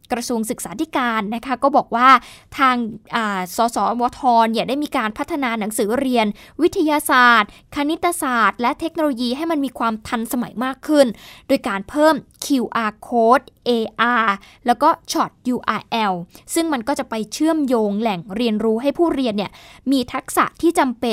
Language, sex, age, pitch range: Thai, female, 20-39, 225-290 Hz